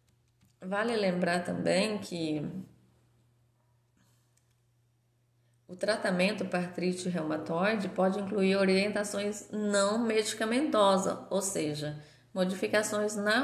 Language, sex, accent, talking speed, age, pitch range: Portuguese, female, Brazilian, 80 wpm, 20-39, 170-215 Hz